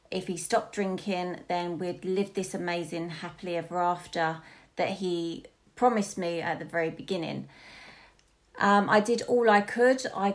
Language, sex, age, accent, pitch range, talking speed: English, female, 30-49, British, 170-200 Hz, 155 wpm